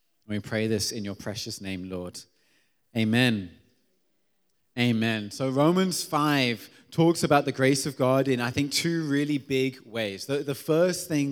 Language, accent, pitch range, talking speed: English, British, 120-145 Hz, 155 wpm